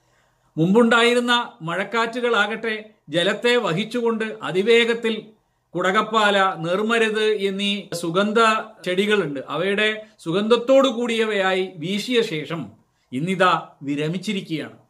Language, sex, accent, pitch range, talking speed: Malayalam, male, native, 185-235 Hz, 65 wpm